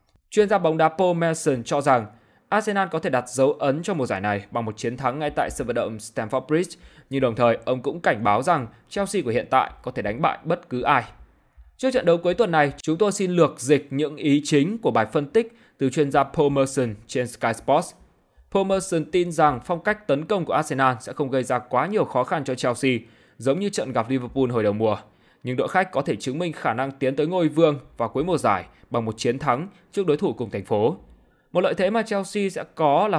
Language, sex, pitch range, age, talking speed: Vietnamese, male, 125-175 Hz, 20-39, 245 wpm